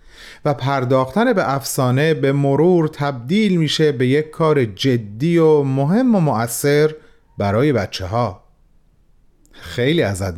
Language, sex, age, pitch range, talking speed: Persian, male, 40-59, 115-160 Hz, 120 wpm